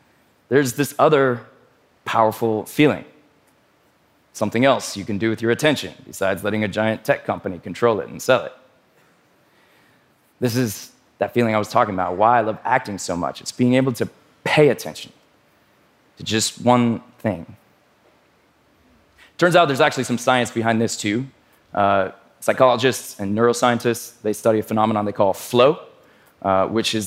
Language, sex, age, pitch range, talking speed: English, male, 20-39, 105-130 Hz, 160 wpm